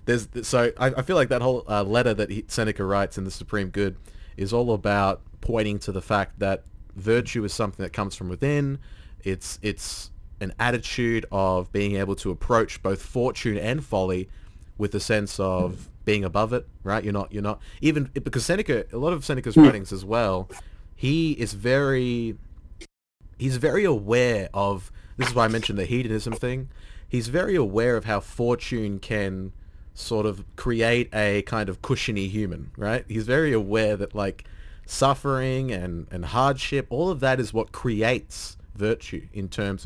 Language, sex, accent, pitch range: English, male, Australian, 95-120 Hz